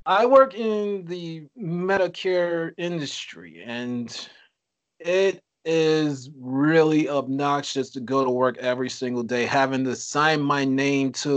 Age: 30-49